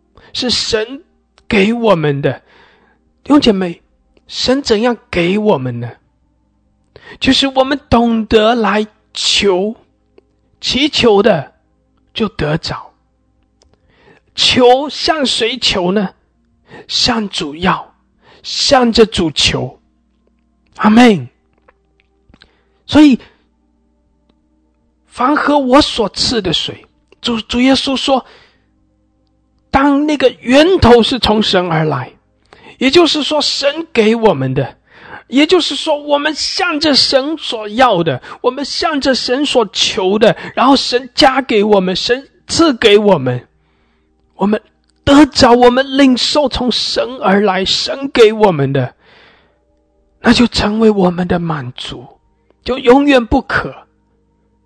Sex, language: male, English